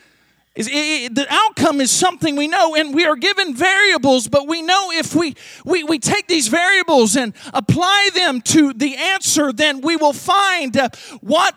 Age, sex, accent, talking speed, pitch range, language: 40-59, male, American, 170 wpm, 295-385 Hz, English